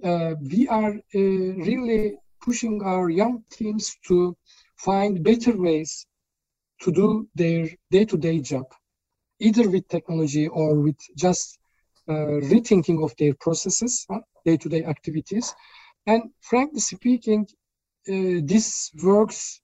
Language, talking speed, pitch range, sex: English, 115 wpm, 160-205 Hz, male